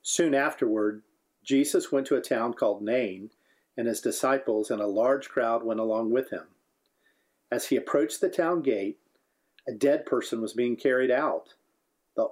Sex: male